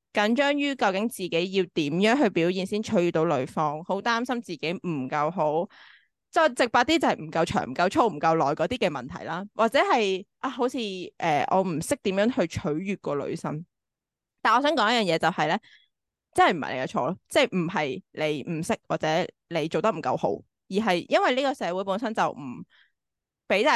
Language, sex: Chinese, female